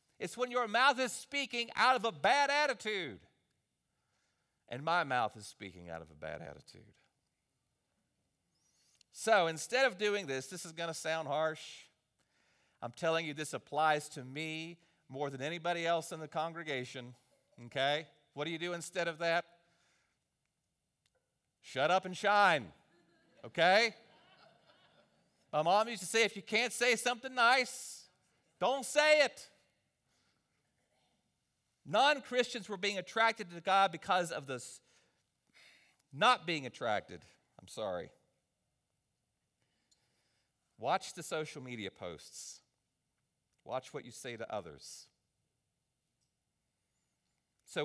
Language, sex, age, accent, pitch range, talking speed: English, male, 40-59, American, 125-200 Hz, 125 wpm